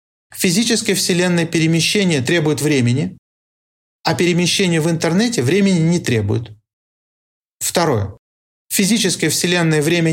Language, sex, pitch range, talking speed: Russian, male, 130-180 Hz, 95 wpm